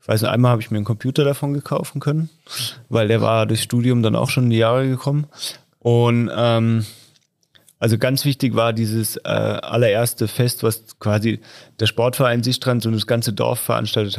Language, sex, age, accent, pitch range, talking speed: German, male, 30-49, German, 110-125 Hz, 185 wpm